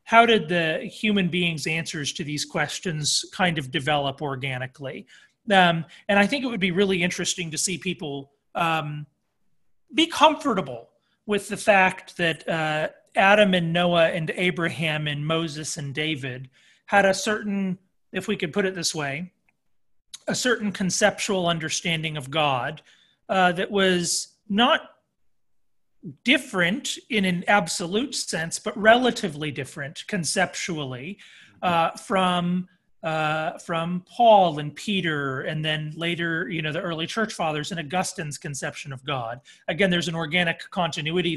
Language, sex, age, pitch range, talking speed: English, male, 40-59, 155-195 Hz, 140 wpm